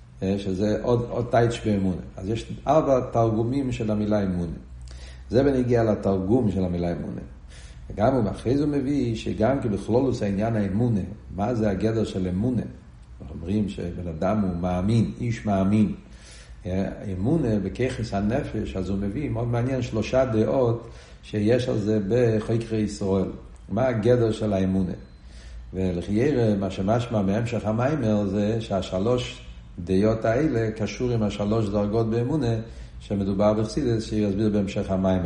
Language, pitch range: Hebrew, 90-115 Hz